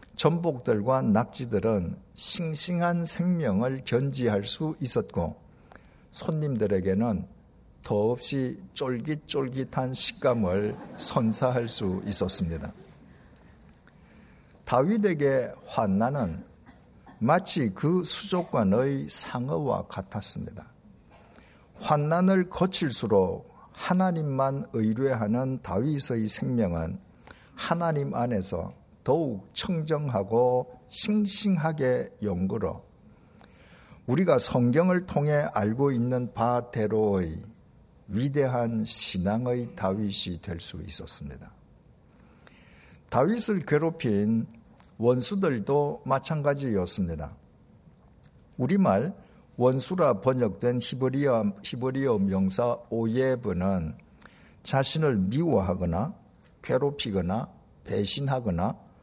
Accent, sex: native, male